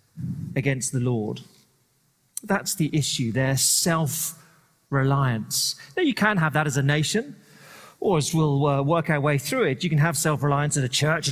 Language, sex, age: English, male, 40-59